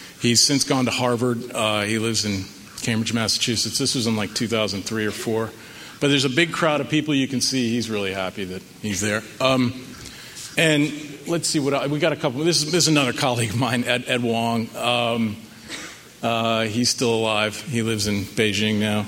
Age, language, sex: 40-59, English, male